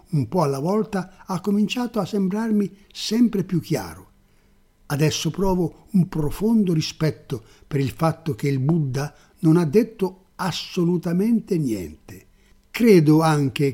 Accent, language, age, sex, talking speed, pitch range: Italian, English, 60-79, male, 125 wpm, 130-175 Hz